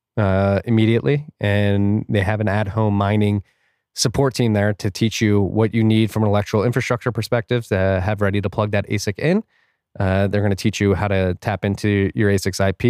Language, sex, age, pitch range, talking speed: English, male, 20-39, 100-115 Hz, 200 wpm